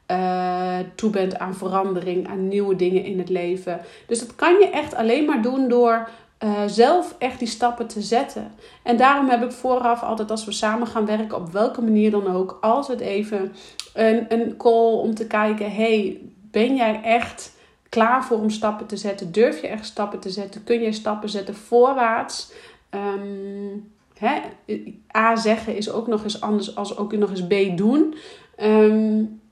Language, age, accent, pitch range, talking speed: Dutch, 40-59, Dutch, 200-235 Hz, 175 wpm